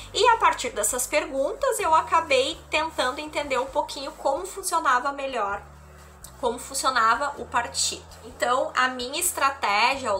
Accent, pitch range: Brazilian, 210-305 Hz